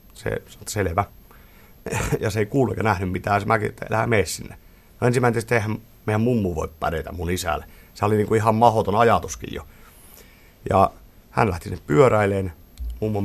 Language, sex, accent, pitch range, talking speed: Finnish, male, native, 90-105 Hz, 155 wpm